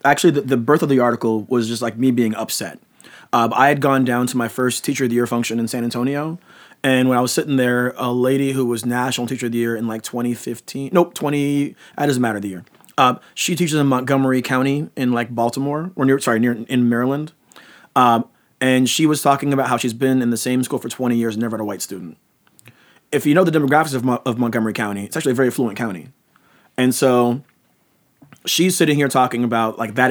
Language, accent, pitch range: English, American, 120-140 Hz